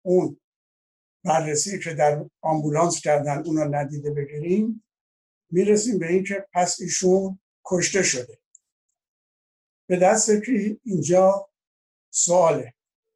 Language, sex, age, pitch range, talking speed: Persian, male, 60-79, 150-185 Hz, 95 wpm